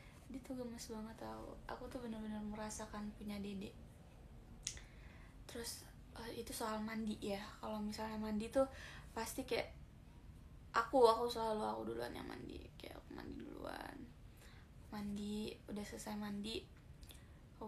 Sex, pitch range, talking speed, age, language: female, 215-245 Hz, 130 wpm, 20-39, Malay